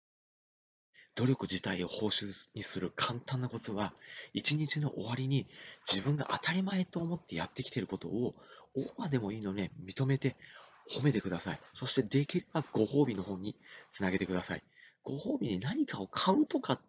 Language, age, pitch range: Japanese, 40-59, 95-140 Hz